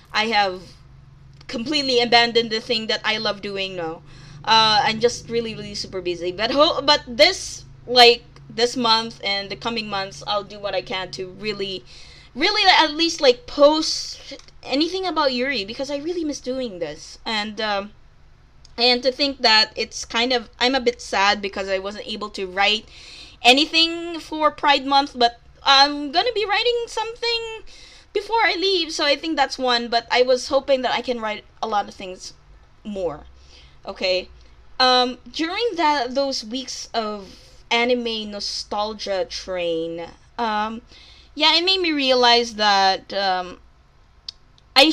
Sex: female